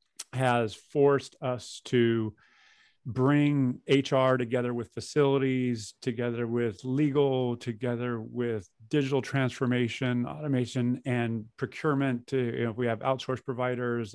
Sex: male